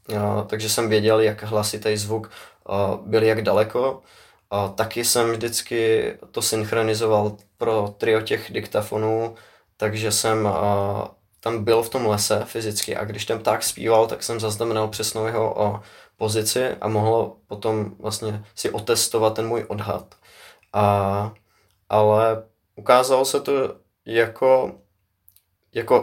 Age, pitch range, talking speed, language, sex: 20-39, 105-115 Hz, 135 wpm, Czech, male